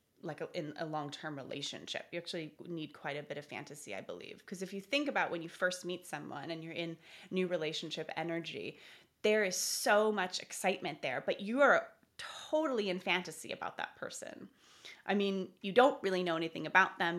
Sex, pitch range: female, 170-230 Hz